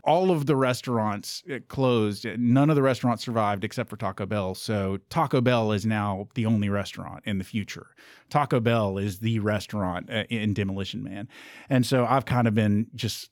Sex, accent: male, American